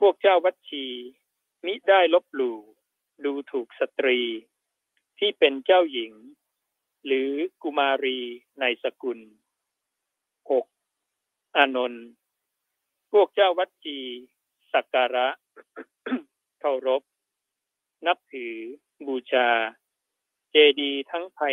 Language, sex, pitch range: Thai, male, 125-185 Hz